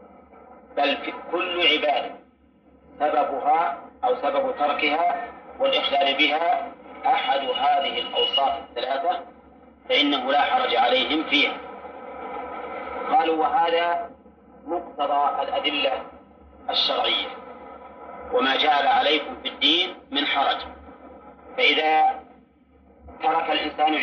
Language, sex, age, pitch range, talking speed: Arabic, male, 40-59, 235-260 Hz, 85 wpm